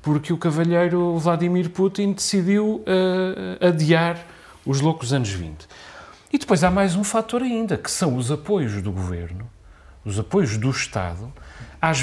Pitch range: 130-195 Hz